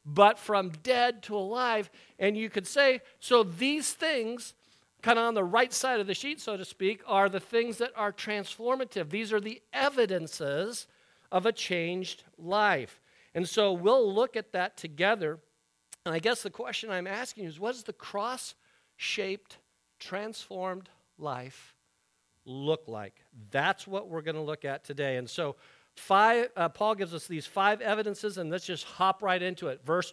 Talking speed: 175 wpm